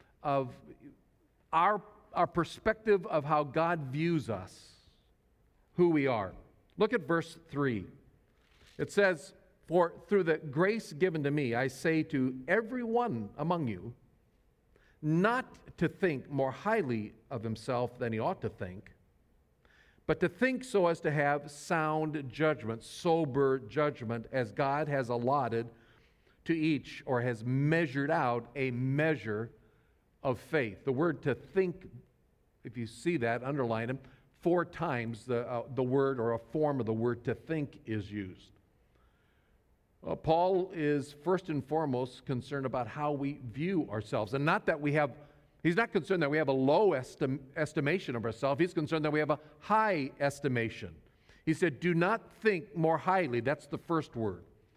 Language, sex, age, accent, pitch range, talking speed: English, male, 50-69, American, 120-165 Hz, 155 wpm